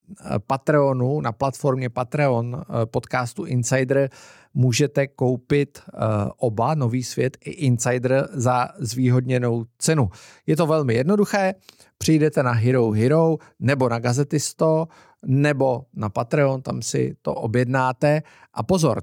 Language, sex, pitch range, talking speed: Czech, male, 115-140 Hz, 115 wpm